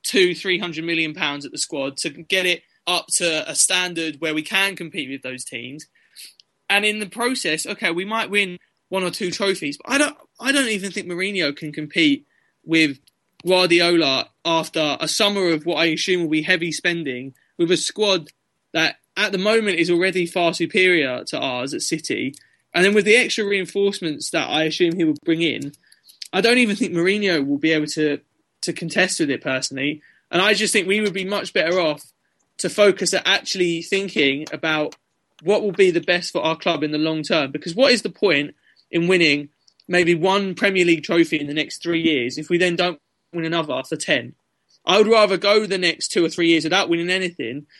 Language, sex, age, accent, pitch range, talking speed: English, male, 20-39, British, 160-195 Hz, 205 wpm